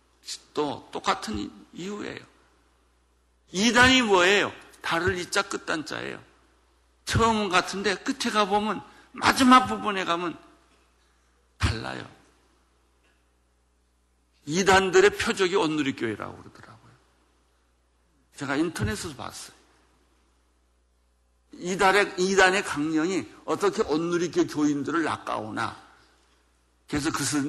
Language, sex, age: Korean, male, 60-79